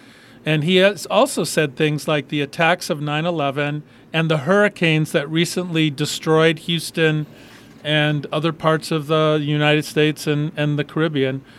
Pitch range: 140-170 Hz